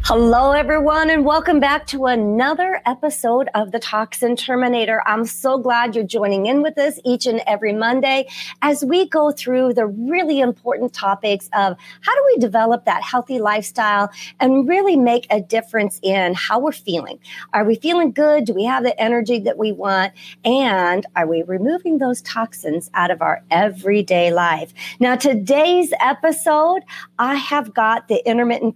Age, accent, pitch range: 40-59, American, 215-280 Hz